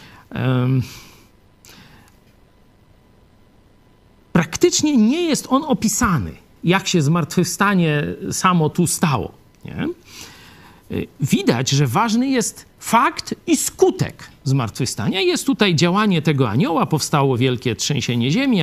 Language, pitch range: Polish, 120-165 Hz